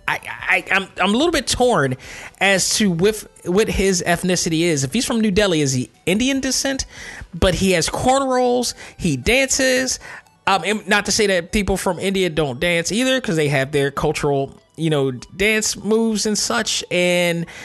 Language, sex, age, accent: English, male, 20-39, American